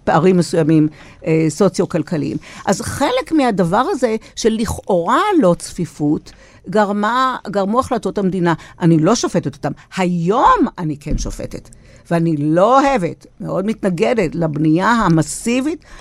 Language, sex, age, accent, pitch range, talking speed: Hebrew, female, 60-79, native, 165-255 Hz, 115 wpm